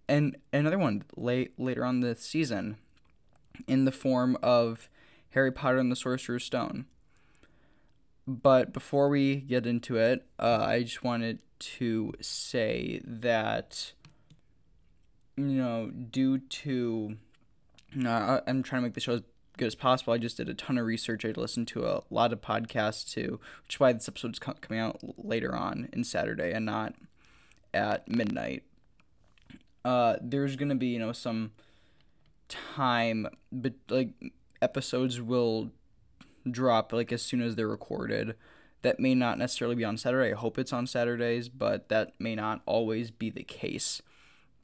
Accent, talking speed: American, 155 wpm